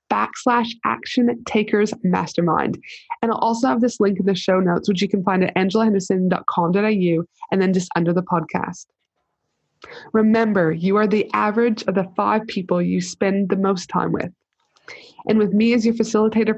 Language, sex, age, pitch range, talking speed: English, female, 20-39, 185-215 Hz, 170 wpm